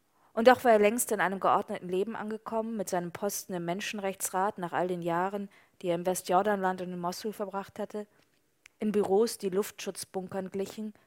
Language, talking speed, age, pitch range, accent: German, 180 wpm, 20-39, 180-210 Hz, German